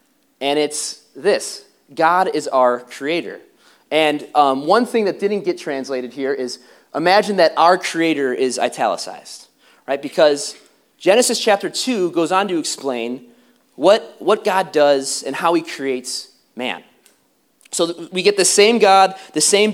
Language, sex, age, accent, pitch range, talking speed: English, male, 30-49, American, 135-190 Hz, 150 wpm